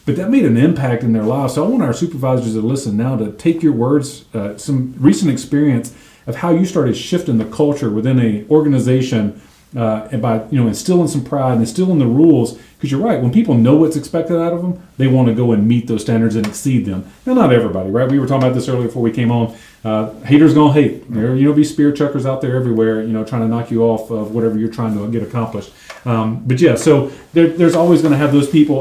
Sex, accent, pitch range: male, American, 115-145 Hz